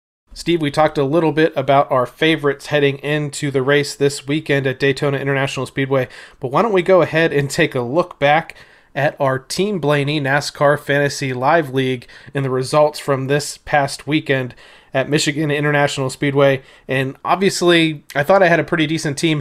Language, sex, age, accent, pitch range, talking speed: English, male, 30-49, American, 130-150 Hz, 180 wpm